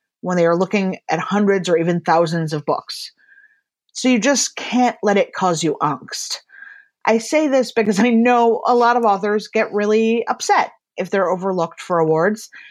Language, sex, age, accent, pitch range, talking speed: English, female, 30-49, American, 170-245 Hz, 180 wpm